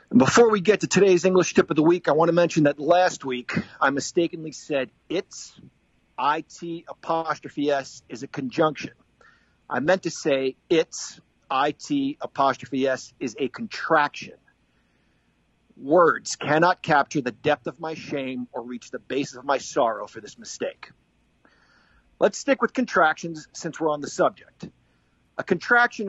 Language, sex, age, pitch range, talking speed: English, male, 40-59, 140-185 Hz, 155 wpm